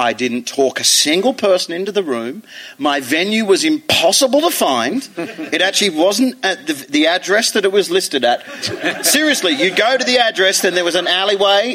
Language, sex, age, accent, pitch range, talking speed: English, male, 40-59, Australian, 180-300 Hz, 195 wpm